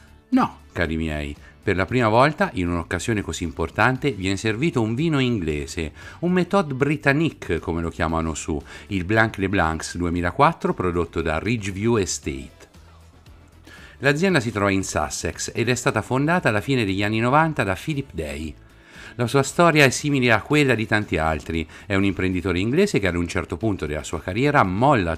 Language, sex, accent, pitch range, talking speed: Italian, male, native, 85-130 Hz, 170 wpm